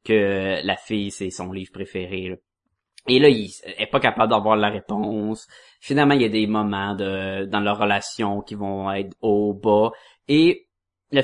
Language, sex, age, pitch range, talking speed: French, male, 30-49, 100-150 Hz, 175 wpm